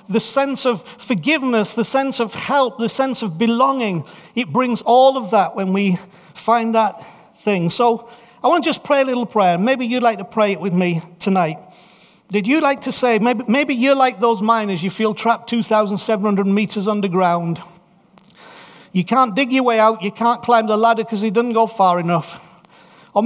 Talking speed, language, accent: 195 wpm, English, British